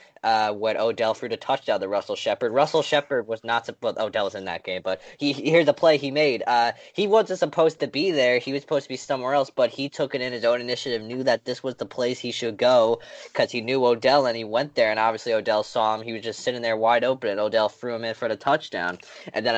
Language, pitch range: English, 110-140 Hz